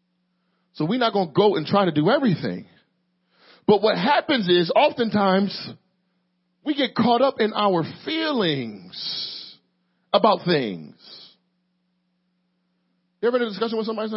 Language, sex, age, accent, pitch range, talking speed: English, male, 40-59, American, 180-225 Hz, 135 wpm